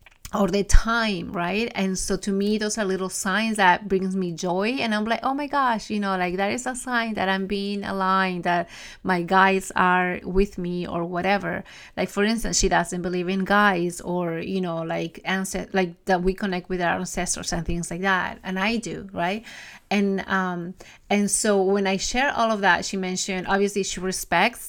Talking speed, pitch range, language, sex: 200 wpm, 180-205 Hz, English, female